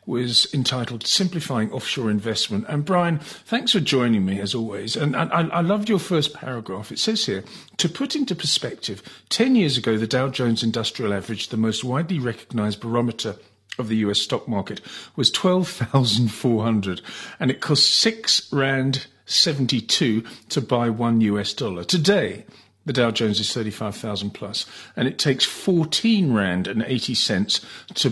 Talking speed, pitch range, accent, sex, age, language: 170 wpm, 110-165 Hz, British, male, 50-69, English